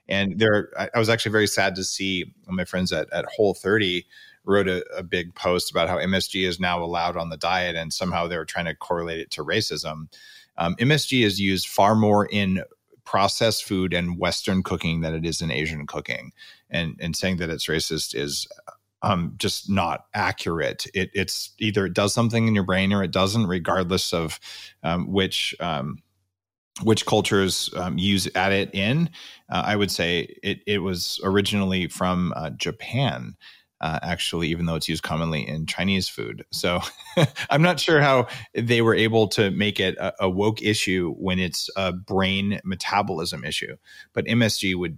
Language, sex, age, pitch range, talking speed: English, male, 30-49, 85-105 Hz, 185 wpm